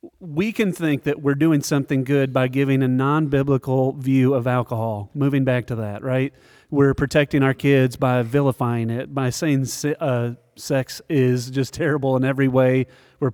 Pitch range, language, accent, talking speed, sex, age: 130-165 Hz, English, American, 170 wpm, male, 40-59